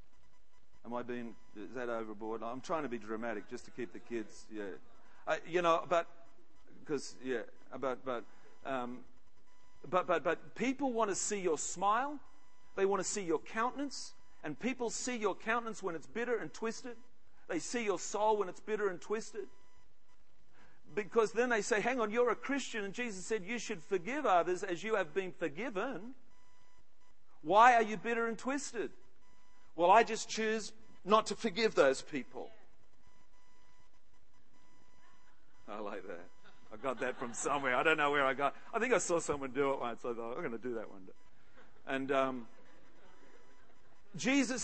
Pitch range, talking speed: 175-240 Hz, 175 wpm